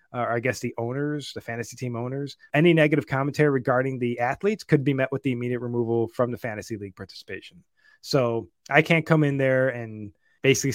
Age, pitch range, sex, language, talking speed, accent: 30-49, 120-150 Hz, male, English, 200 wpm, American